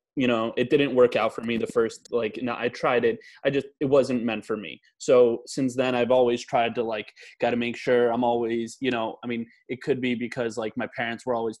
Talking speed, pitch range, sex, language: 255 wpm, 115-125 Hz, male, English